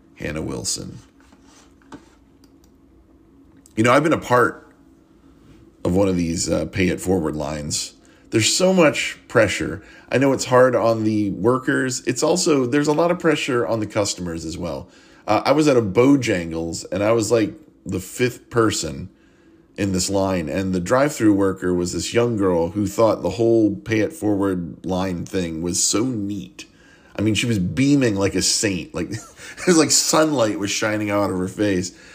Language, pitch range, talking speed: English, 95-140 Hz, 175 wpm